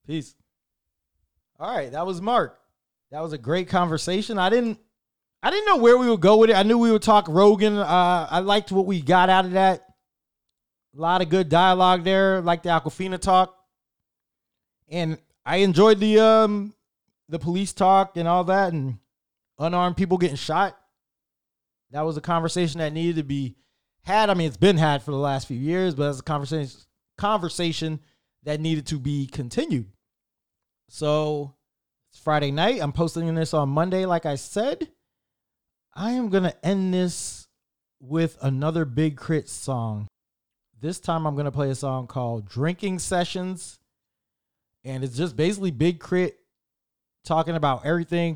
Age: 20-39